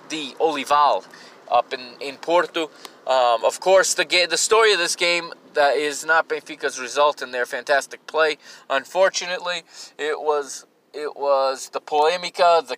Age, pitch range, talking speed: 20-39, 130-160 Hz, 155 wpm